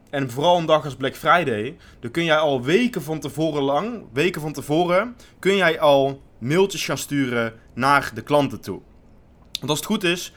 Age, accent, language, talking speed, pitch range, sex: 20-39, Dutch, Dutch, 190 wpm, 130-170 Hz, male